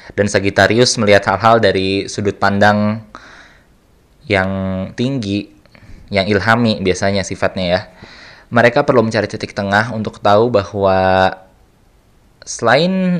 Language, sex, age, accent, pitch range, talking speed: Indonesian, male, 20-39, native, 95-125 Hz, 105 wpm